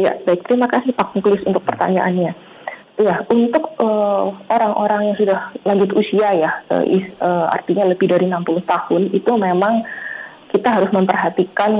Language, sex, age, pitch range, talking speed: Indonesian, female, 30-49, 175-205 Hz, 155 wpm